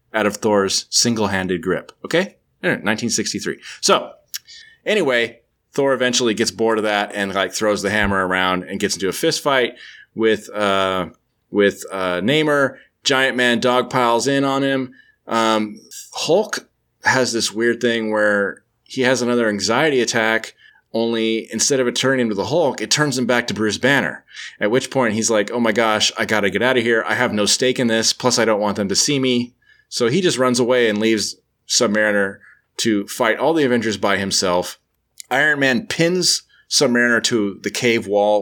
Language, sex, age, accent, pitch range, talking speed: English, male, 30-49, American, 100-125 Hz, 185 wpm